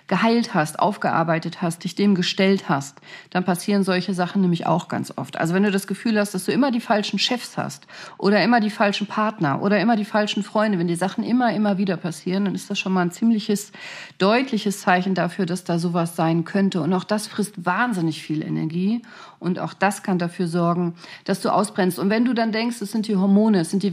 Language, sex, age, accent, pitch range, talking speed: German, female, 40-59, German, 170-200 Hz, 225 wpm